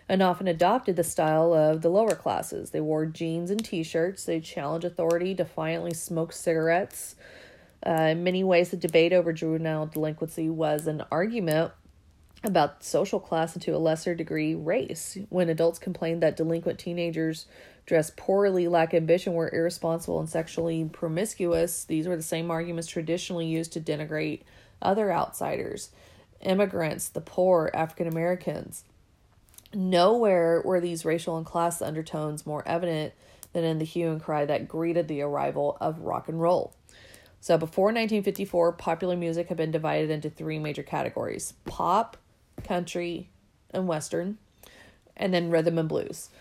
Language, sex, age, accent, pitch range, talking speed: English, female, 30-49, American, 160-175 Hz, 155 wpm